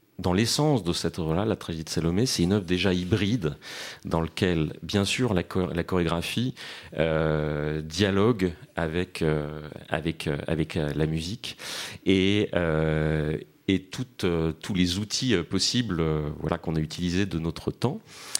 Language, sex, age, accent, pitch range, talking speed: French, male, 30-49, French, 80-105 Hz, 155 wpm